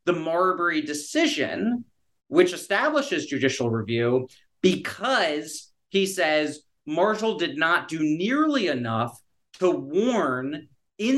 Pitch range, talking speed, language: 135-205 Hz, 100 wpm, English